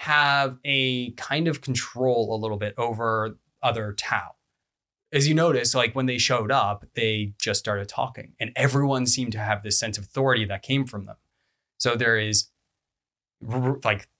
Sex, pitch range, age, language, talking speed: male, 105-135 Hz, 20-39, English, 170 wpm